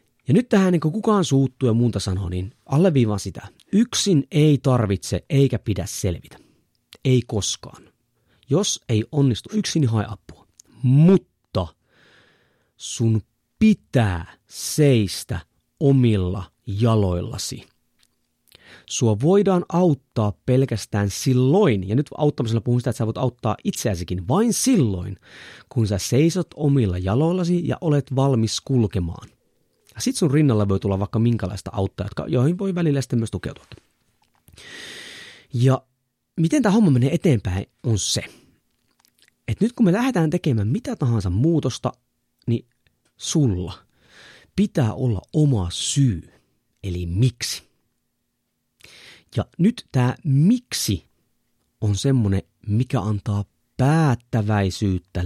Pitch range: 105-145 Hz